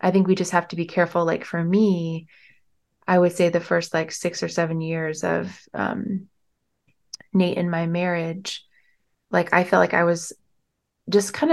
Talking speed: 180 wpm